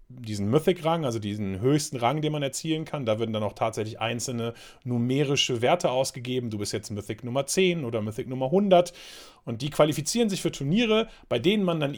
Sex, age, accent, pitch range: male, 40-59, German, 115-170 Hz